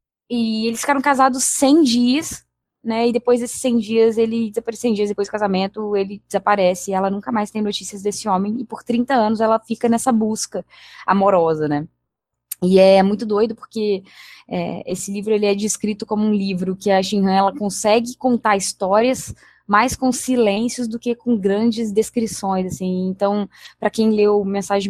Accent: Brazilian